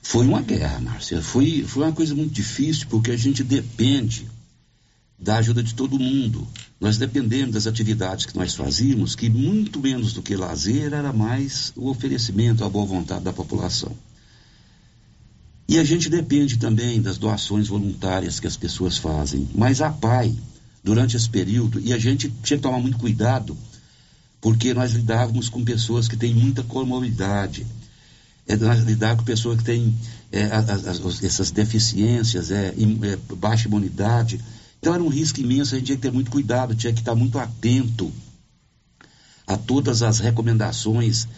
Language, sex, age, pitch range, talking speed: Portuguese, male, 60-79, 110-125 Hz, 160 wpm